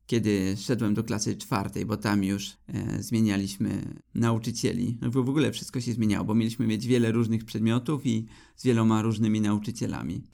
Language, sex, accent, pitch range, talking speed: Polish, male, native, 105-120 Hz, 165 wpm